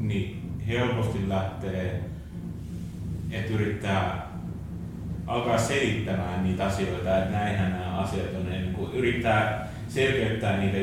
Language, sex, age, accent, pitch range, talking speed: Finnish, male, 30-49, native, 90-110 Hz, 105 wpm